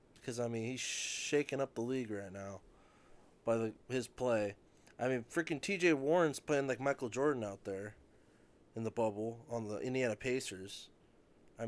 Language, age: English, 20-39